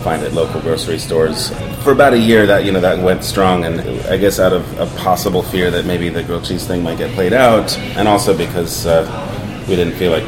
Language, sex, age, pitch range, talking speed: English, male, 30-49, 80-100 Hz, 240 wpm